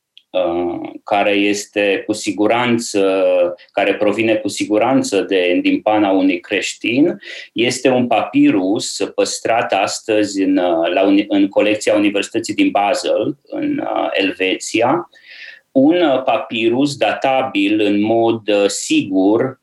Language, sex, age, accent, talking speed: Romanian, male, 30-49, native, 95 wpm